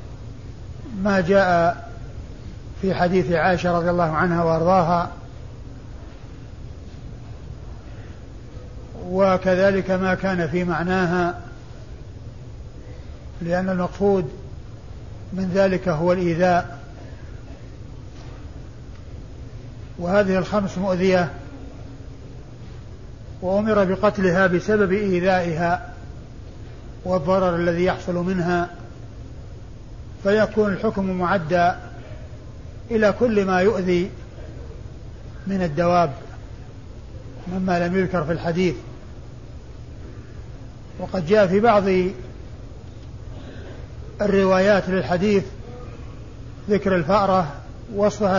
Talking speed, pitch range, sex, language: 65 wpm, 115-190 Hz, male, Arabic